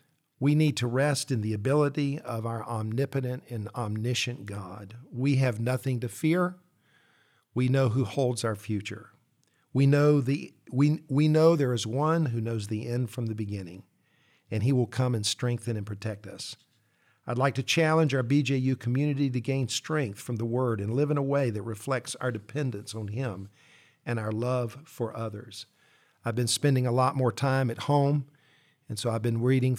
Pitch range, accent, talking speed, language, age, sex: 115-140 Hz, American, 185 wpm, English, 50-69, male